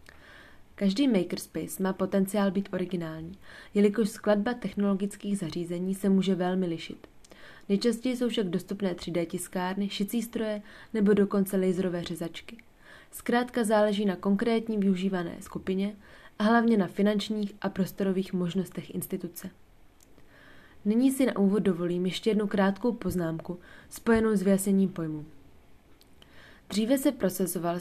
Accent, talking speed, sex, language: native, 120 wpm, female, Czech